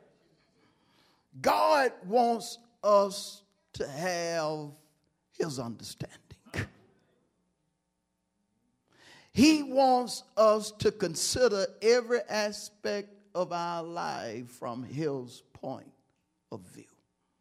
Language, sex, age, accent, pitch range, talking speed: English, male, 50-69, American, 130-190 Hz, 75 wpm